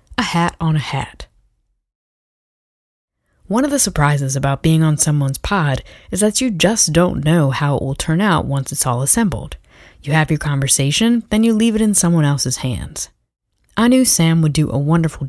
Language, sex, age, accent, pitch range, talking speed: English, female, 30-49, American, 140-190 Hz, 190 wpm